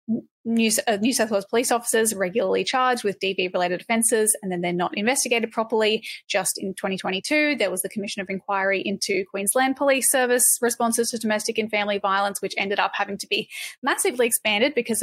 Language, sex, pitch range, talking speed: English, female, 200-245 Hz, 185 wpm